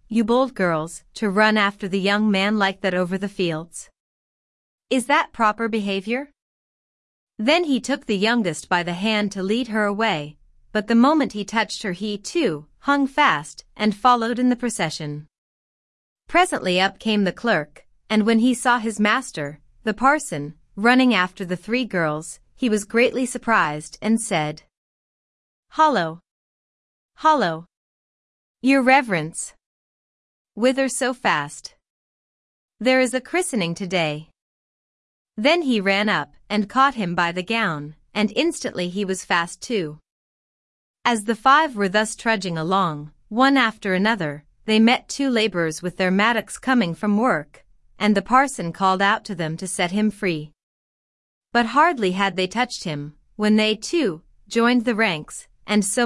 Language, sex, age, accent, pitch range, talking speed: English, female, 30-49, American, 180-240 Hz, 150 wpm